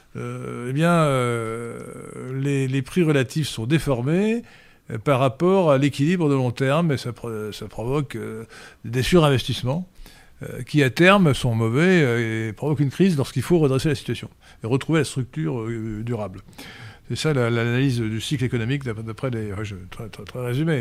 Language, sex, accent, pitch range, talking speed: French, male, French, 115-155 Hz, 175 wpm